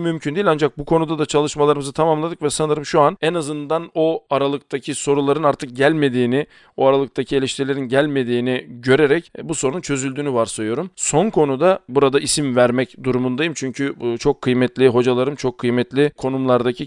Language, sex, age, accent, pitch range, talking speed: Turkish, male, 40-59, native, 125-145 Hz, 145 wpm